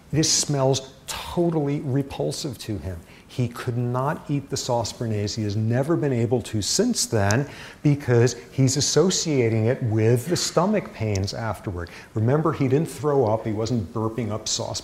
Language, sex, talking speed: English, male, 160 wpm